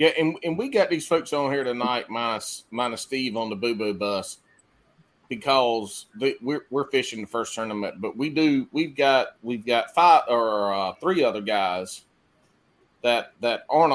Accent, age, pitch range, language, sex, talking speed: American, 30-49, 110-140 Hz, English, male, 180 wpm